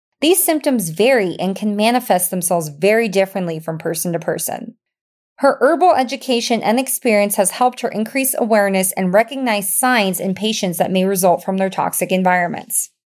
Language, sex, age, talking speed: English, female, 30-49, 160 wpm